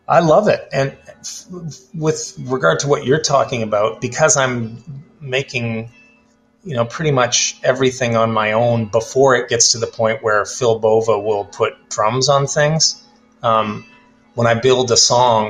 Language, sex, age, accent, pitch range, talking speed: English, male, 30-49, American, 110-135 Hz, 170 wpm